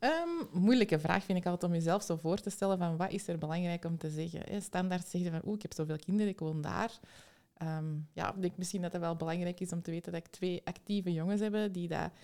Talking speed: 250 wpm